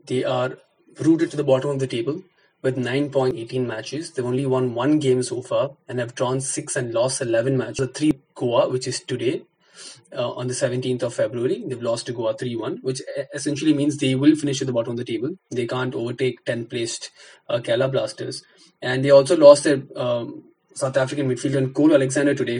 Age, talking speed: 20-39, 205 wpm